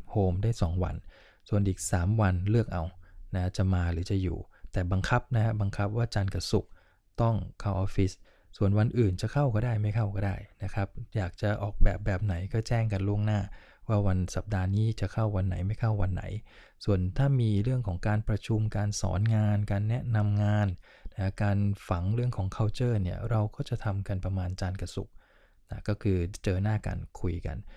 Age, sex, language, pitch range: 20-39, male, English, 95-110 Hz